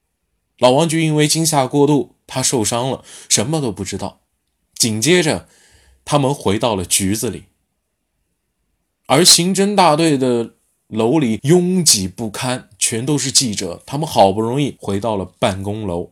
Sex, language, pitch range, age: male, Chinese, 95-135 Hz, 20-39